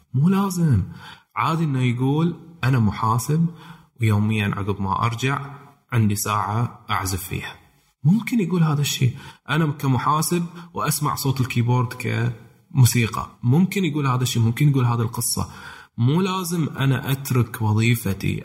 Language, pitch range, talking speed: Arabic, 110-140 Hz, 125 wpm